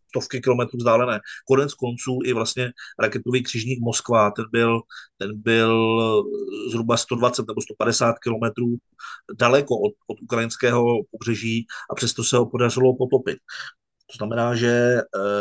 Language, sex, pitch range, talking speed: Slovak, male, 110-125 Hz, 130 wpm